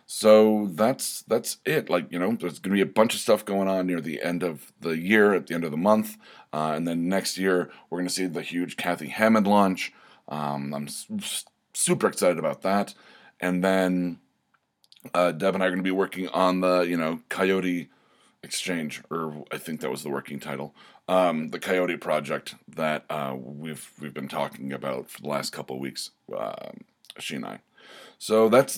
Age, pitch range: 30-49, 80-100 Hz